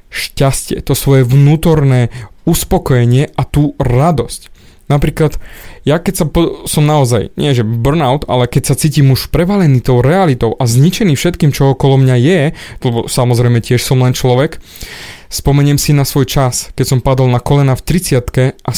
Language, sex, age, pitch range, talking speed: Slovak, male, 20-39, 125-145 Hz, 165 wpm